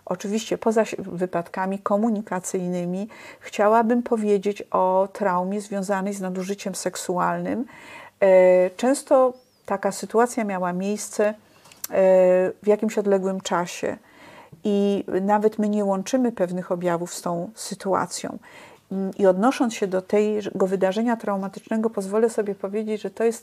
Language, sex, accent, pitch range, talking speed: Polish, female, native, 185-220 Hz, 115 wpm